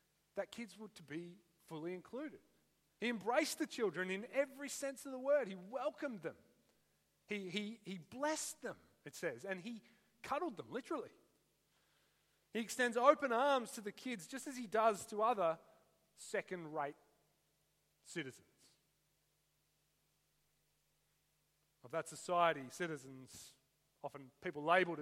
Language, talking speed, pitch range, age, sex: English, 125 wpm, 160-225 Hz, 40-59, male